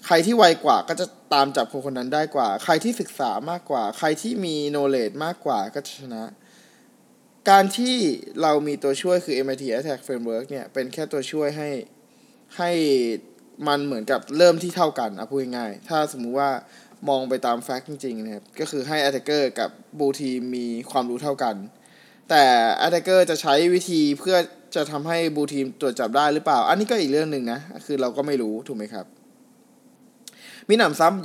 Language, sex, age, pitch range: Thai, male, 20-39, 130-210 Hz